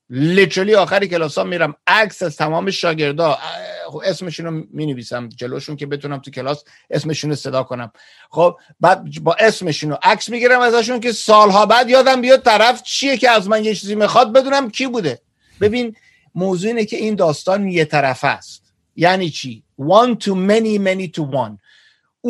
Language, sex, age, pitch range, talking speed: Persian, male, 50-69, 150-220 Hz, 160 wpm